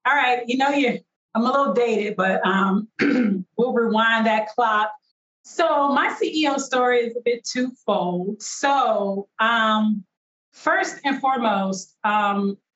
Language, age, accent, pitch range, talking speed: English, 40-59, American, 185-235 Hz, 130 wpm